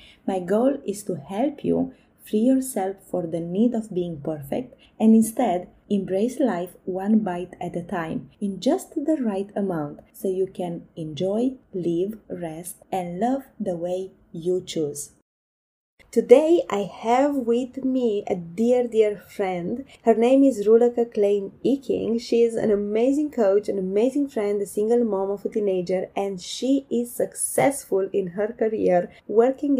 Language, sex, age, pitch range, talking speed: English, female, 20-39, 190-250 Hz, 155 wpm